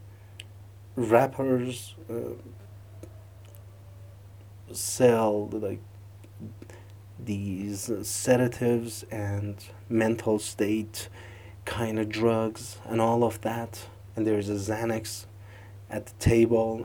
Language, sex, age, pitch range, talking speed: English, male, 30-49, 100-115 Hz, 90 wpm